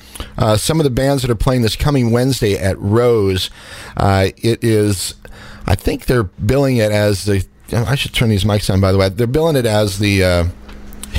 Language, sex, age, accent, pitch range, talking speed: English, male, 40-59, American, 100-120 Hz, 205 wpm